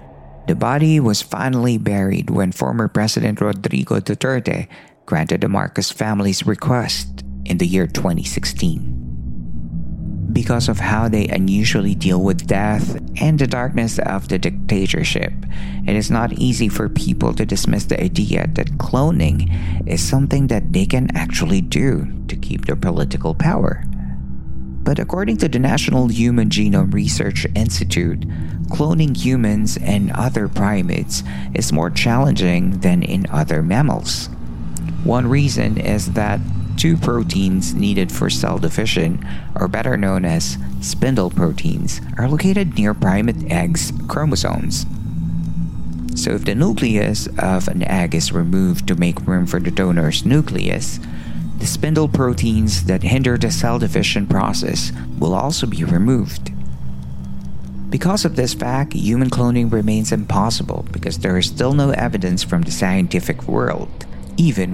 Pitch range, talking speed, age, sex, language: 70-115 Hz, 135 wpm, 50-69, male, Filipino